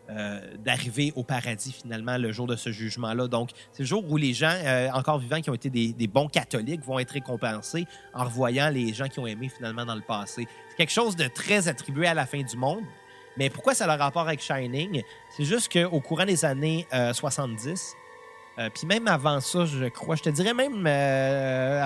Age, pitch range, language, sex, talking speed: 30-49, 125-165 Hz, French, male, 220 wpm